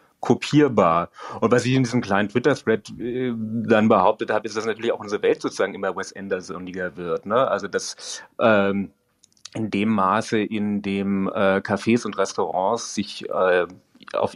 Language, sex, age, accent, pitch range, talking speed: German, male, 40-59, German, 100-120 Hz, 165 wpm